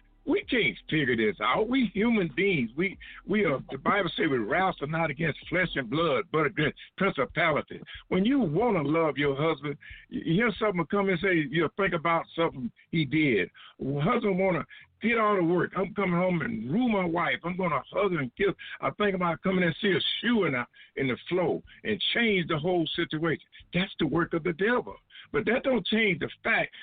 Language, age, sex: English, 60-79, male